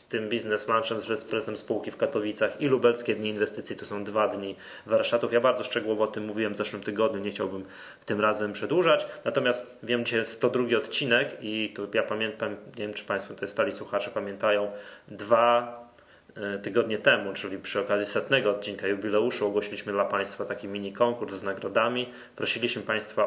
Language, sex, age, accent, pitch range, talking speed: Polish, male, 20-39, native, 105-120 Hz, 175 wpm